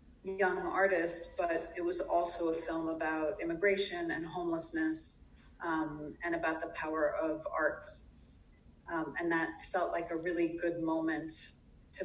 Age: 30-49